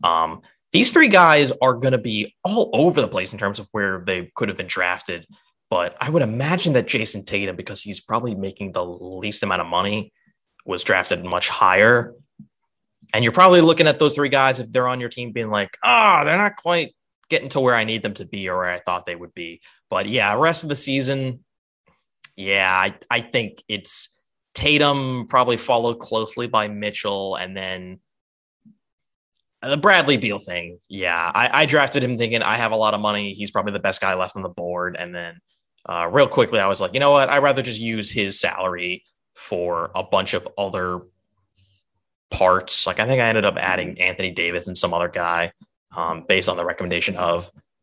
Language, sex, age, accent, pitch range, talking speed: English, male, 20-39, American, 95-135 Hz, 200 wpm